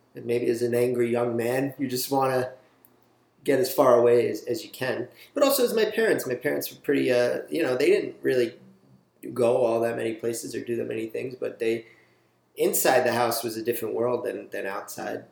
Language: English